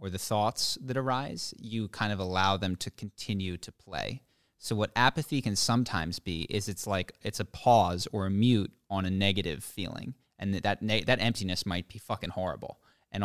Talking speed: 200 wpm